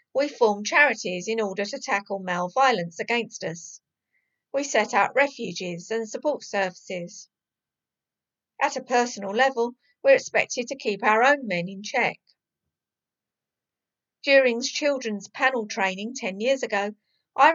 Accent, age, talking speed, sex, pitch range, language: British, 50-69, 135 wpm, female, 200-265 Hz, English